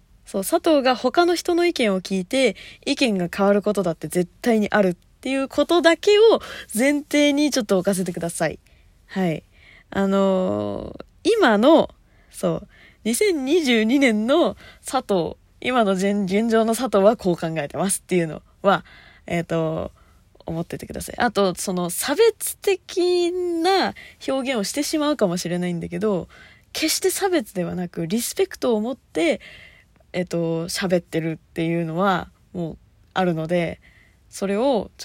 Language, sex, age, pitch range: Japanese, female, 20-39, 170-260 Hz